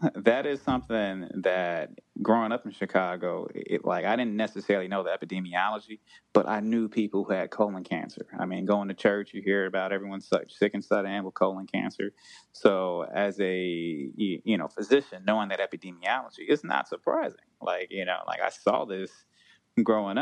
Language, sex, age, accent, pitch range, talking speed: English, male, 20-39, American, 95-105 Hz, 170 wpm